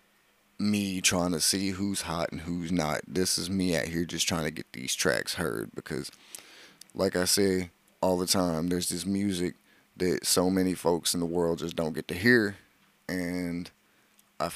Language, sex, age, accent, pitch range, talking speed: English, male, 30-49, American, 85-95 Hz, 185 wpm